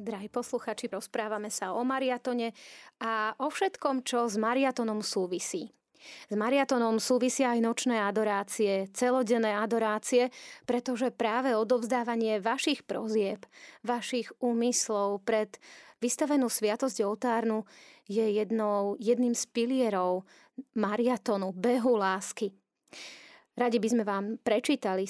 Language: Slovak